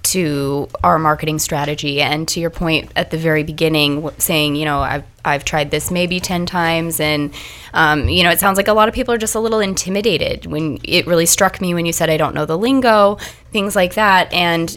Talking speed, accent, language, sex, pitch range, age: 225 wpm, American, English, female, 155-190 Hz, 20-39